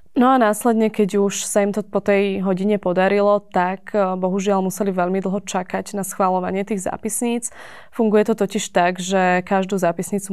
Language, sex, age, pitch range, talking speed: Slovak, female, 20-39, 190-210 Hz, 170 wpm